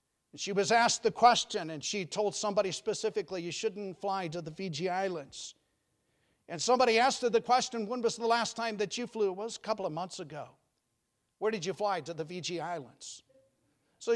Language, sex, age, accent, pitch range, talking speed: English, male, 50-69, American, 155-215 Hz, 200 wpm